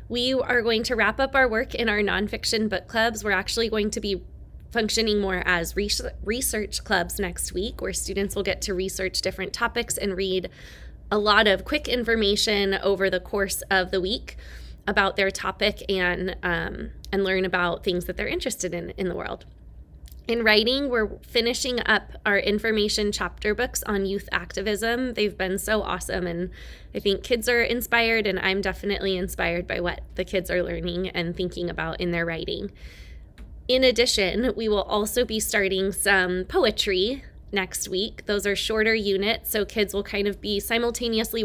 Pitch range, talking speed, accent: 185-220 Hz, 175 wpm, American